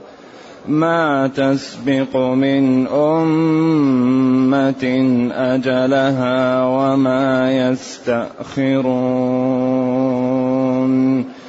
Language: English